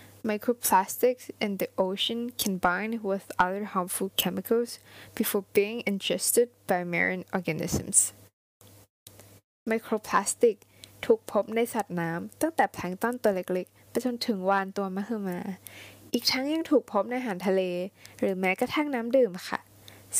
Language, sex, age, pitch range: Thai, female, 10-29, 185-240 Hz